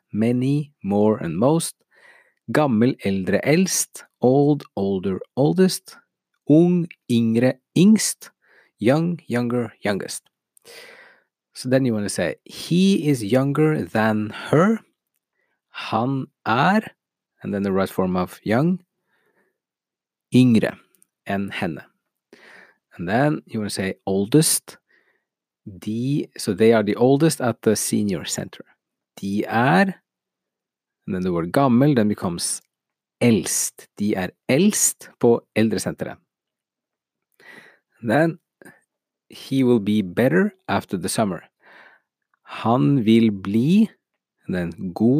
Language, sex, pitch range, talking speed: English, male, 105-155 Hz, 115 wpm